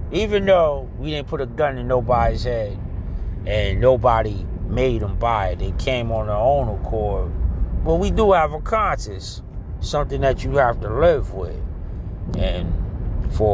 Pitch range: 90-125 Hz